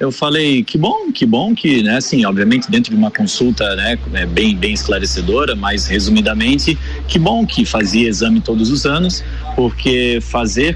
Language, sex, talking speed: Portuguese, male, 165 wpm